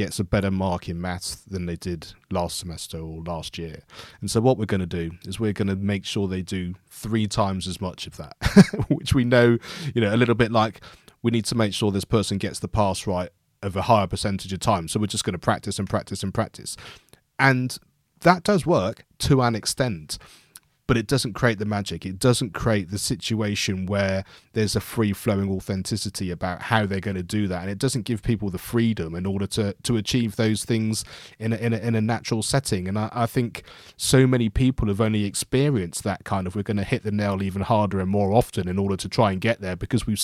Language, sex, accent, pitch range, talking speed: English, male, British, 95-120 Hz, 225 wpm